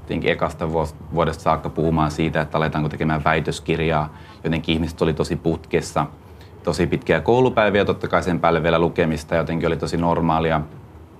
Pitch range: 80-90 Hz